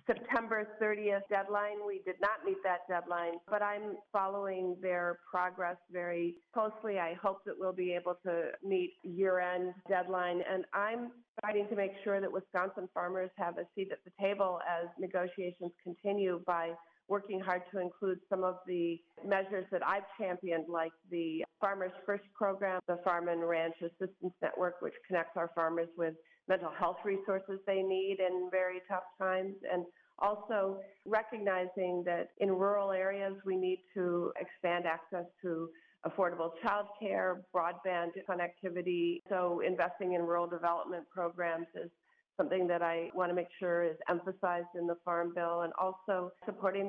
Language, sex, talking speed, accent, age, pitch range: English, female, 155 wpm, American, 40-59, 175-195 Hz